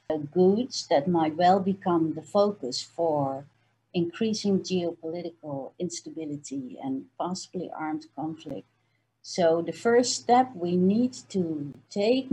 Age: 60-79